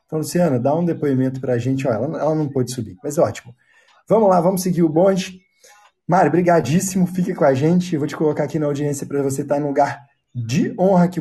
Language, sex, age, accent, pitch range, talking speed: Portuguese, male, 20-39, Brazilian, 135-175 Hz, 225 wpm